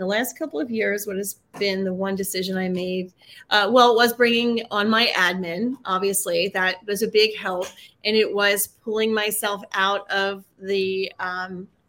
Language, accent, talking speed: English, American, 180 wpm